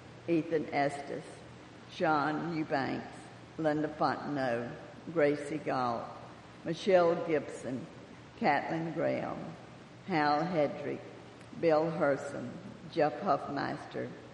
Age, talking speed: 60-79, 75 wpm